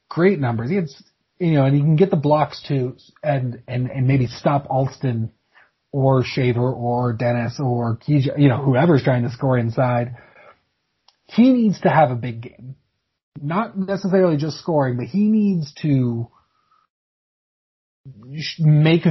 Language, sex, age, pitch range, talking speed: English, male, 30-49, 130-160 Hz, 145 wpm